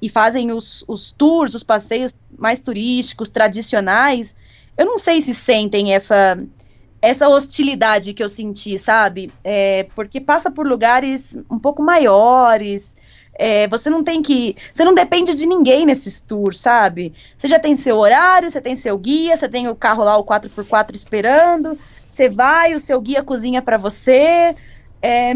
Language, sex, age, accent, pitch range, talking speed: Portuguese, female, 20-39, Brazilian, 215-280 Hz, 165 wpm